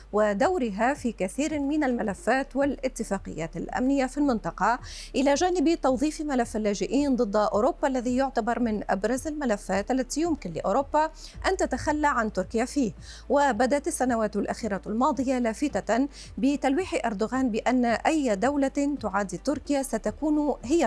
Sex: female